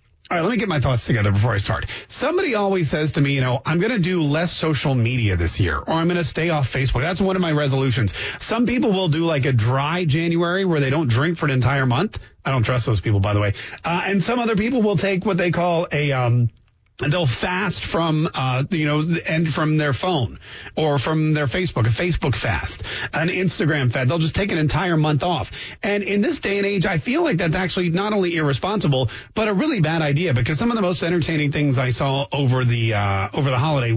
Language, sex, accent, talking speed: English, male, American, 240 wpm